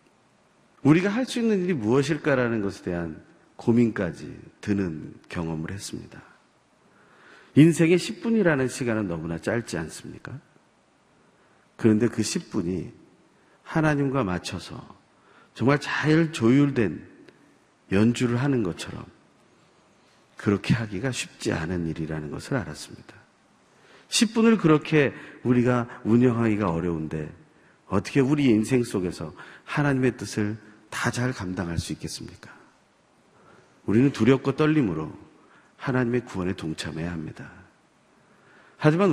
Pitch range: 95-140 Hz